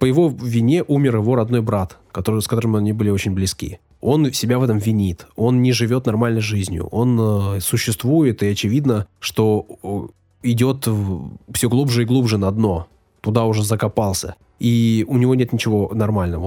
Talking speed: 170 wpm